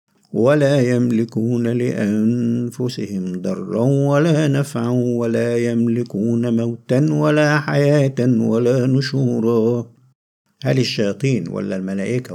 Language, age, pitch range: Arabic, 50-69, 110-135 Hz